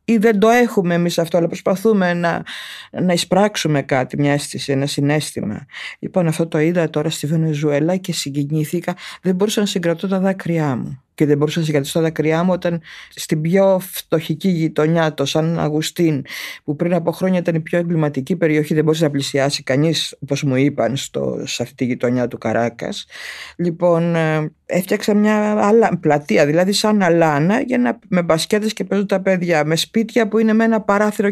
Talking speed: 180 wpm